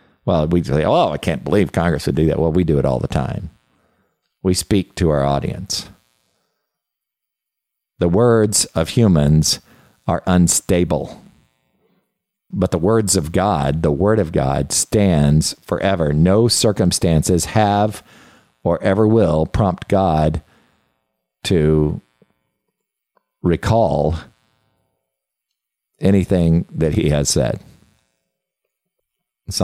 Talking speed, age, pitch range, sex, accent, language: 115 wpm, 50-69, 75-95 Hz, male, American, English